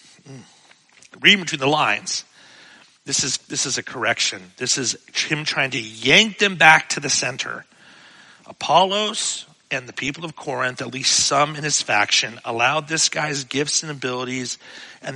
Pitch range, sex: 120-155 Hz, male